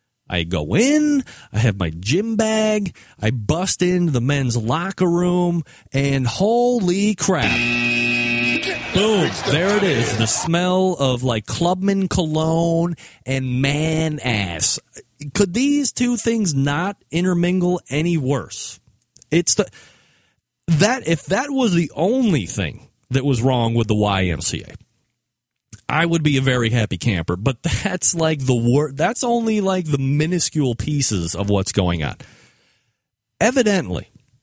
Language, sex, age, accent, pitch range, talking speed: English, male, 30-49, American, 115-175 Hz, 130 wpm